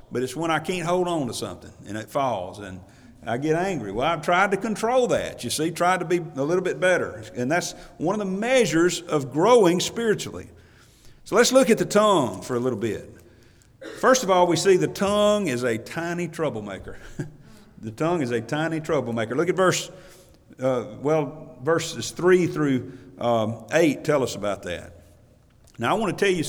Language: English